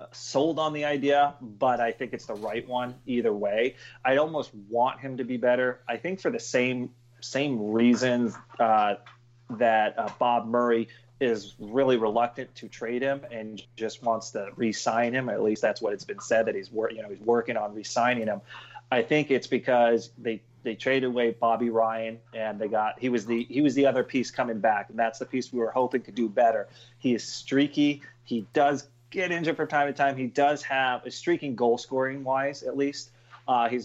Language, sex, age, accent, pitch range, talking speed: English, male, 30-49, American, 115-130 Hz, 205 wpm